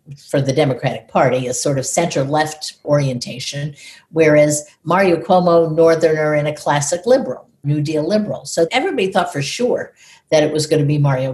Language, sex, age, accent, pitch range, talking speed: English, female, 60-79, American, 150-210 Hz, 170 wpm